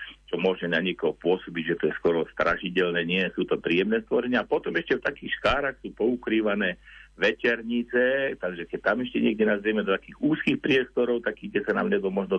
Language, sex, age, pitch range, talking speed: Slovak, male, 50-69, 85-115 Hz, 195 wpm